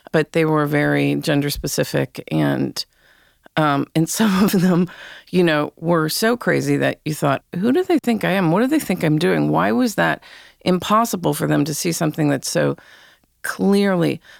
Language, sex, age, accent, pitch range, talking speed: English, female, 40-59, American, 160-200 Hz, 185 wpm